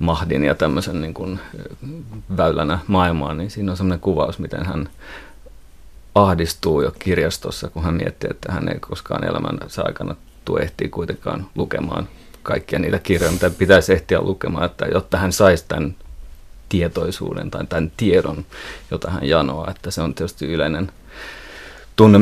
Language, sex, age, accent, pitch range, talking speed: Finnish, male, 30-49, native, 80-95 Hz, 145 wpm